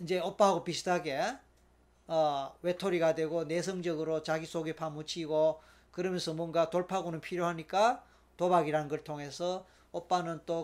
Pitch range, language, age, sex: 165-215 Hz, Korean, 40-59, male